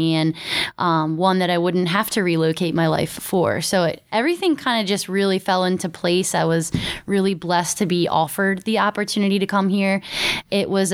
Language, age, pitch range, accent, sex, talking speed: English, 10-29, 165-190 Hz, American, female, 190 wpm